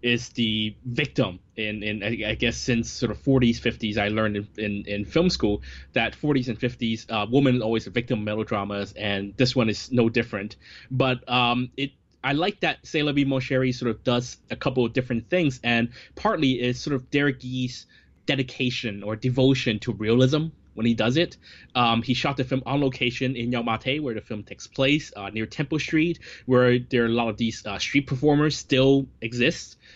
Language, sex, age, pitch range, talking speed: English, male, 20-39, 110-135 Hz, 195 wpm